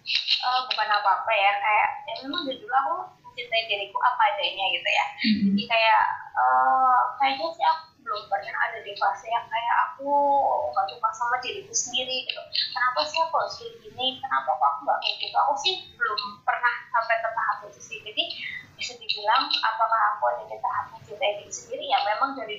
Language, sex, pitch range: Indonesian, female, 210-295 Hz